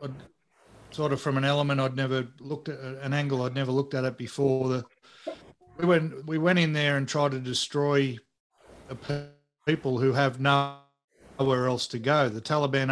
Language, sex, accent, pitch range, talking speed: English, male, Australian, 125-140 Hz, 180 wpm